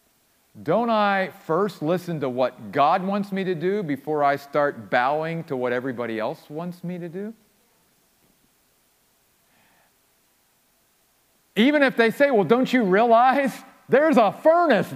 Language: English